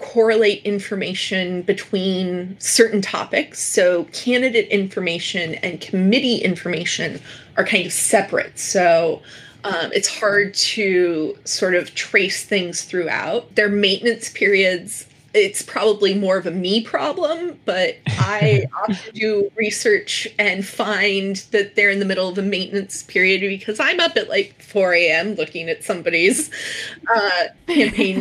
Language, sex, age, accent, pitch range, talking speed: English, female, 20-39, American, 195-275 Hz, 130 wpm